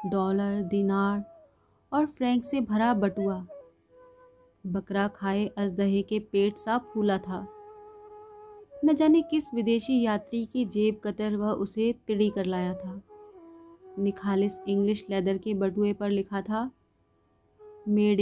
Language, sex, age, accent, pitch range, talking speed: Hindi, female, 30-49, native, 200-305 Hz, 125 wpm